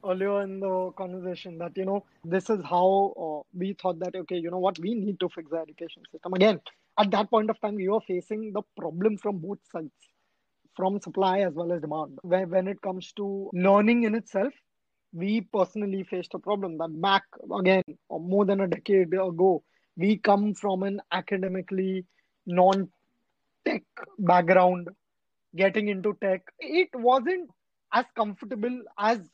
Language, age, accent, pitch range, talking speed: English, 20-39, Indian, 185-240 Hz, 170 wpm